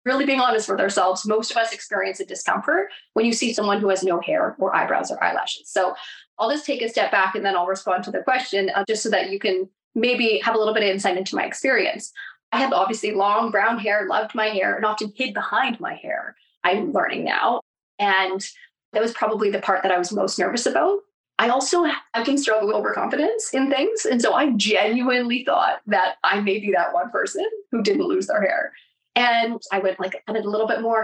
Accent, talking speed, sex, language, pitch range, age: American, 230 wpm, female, English, 200-260 Hz, 20-39